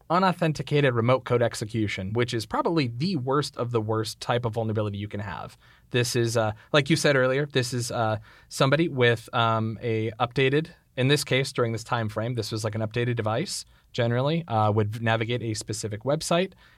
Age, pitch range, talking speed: 30-49, 115-140 Hz, 190 wpm